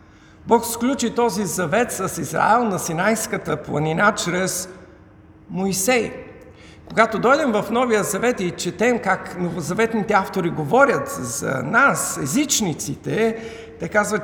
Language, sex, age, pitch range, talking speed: Bulgarian, male, 50-69, 150-220 Hz, 115 wpm